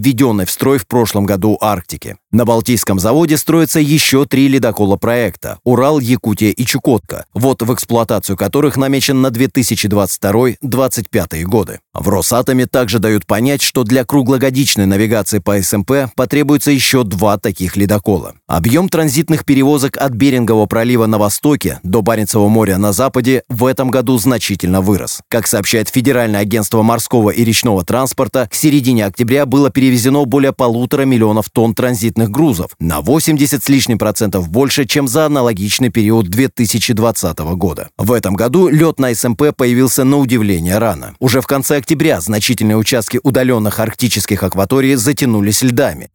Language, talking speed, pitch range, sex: Russian, 145 wpm, 105-135 Hz, male